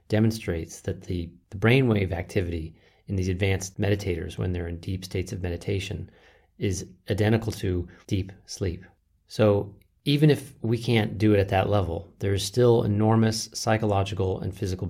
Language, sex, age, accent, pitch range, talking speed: English, male, 30-49, American, 90-110 Hz, 155 wpm